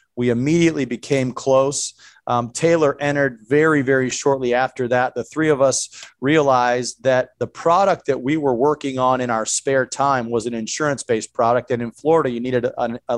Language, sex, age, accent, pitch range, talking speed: English, male, 40-59, American, 125-140 Hz, 180 wpm